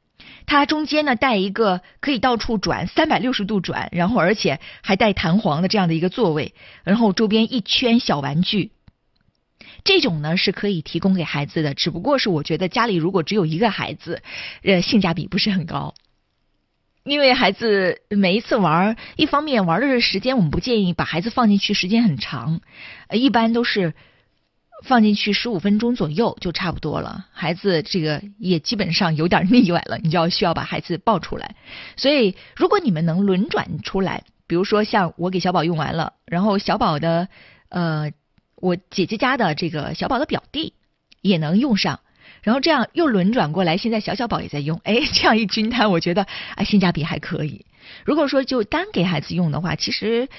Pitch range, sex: 170-230 Hz, female